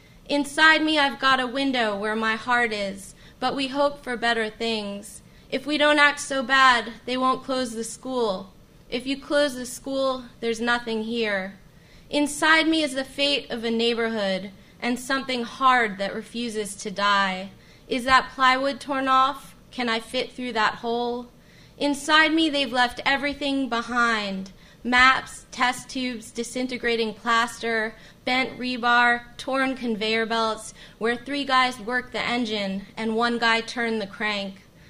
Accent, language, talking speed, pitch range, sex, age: American, English, 155 wpm, 215-255 Hz, female, 20-39